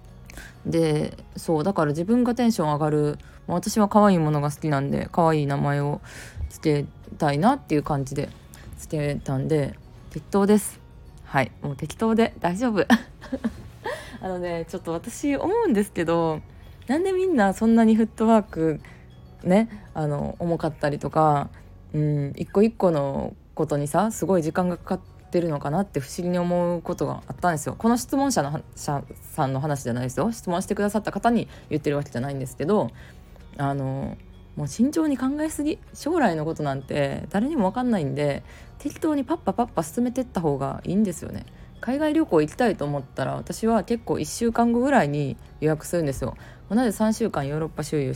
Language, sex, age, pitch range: Japanese, female, 20-39, 145-225 Hz